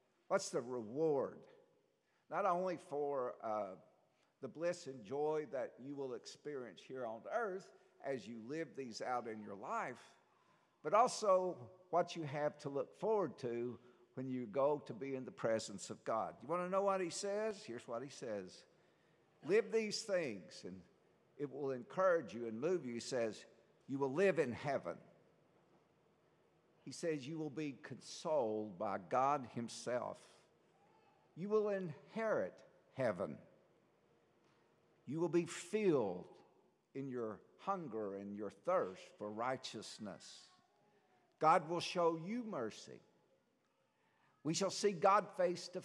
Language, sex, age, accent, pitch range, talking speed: English, male, 60-79, American, 130-195 Hz, 145 wpm